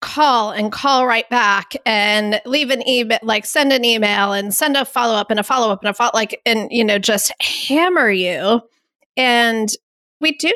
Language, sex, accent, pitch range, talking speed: English, female, American, 210-270 Hz, 200 wpm